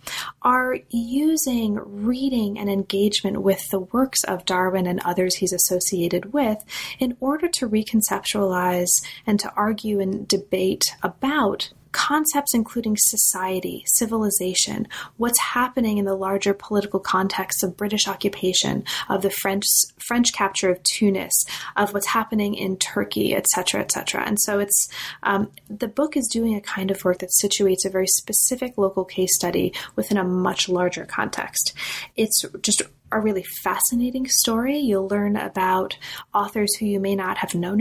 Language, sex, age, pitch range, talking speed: English, female, 30-49, 185-225 Hz, 150 wpm